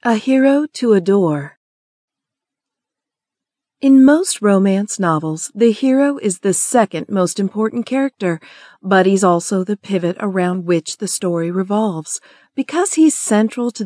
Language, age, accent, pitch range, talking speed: English, 40-59, American, 180-225 Hz, 130 wpm